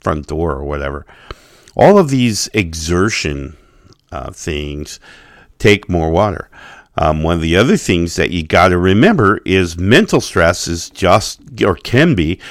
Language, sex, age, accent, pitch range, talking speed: English, male, 50-69, American, 75-100 Hz, 155 wpm